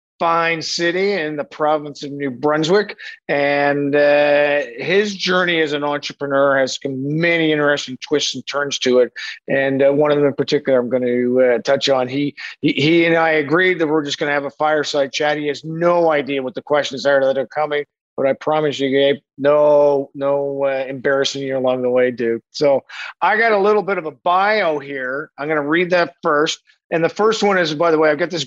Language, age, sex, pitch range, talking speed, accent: English, 50-69, male, 140-170 Hz, 215 wpm, American